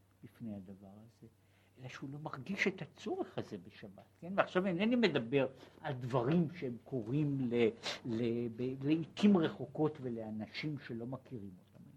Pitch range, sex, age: 105-170 Hz, male, 60-79